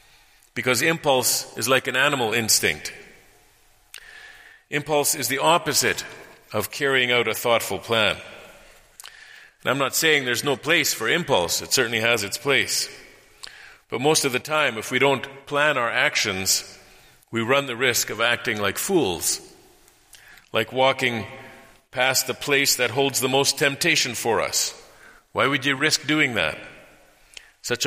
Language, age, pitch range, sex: English, 50-69, 120-150 Hz, male